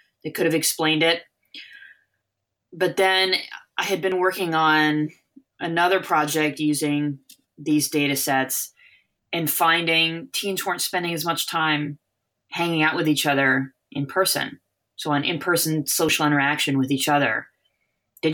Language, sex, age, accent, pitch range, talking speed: English, female, 20-39, American, 135-165 Hz, 135 wpm